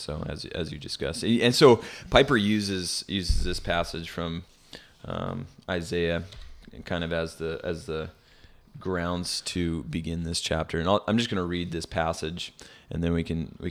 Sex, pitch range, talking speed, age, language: male, 85-95 Hz, 175 wpm, 20-39, English